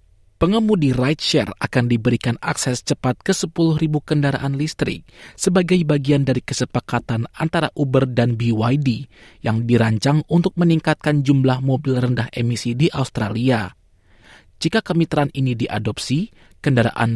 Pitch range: 120-160 Hz